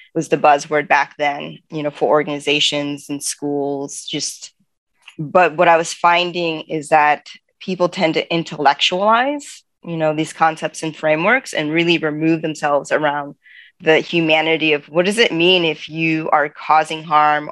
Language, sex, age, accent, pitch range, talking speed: English, female, 20-39, American, 150-180 Hz, 160 wpm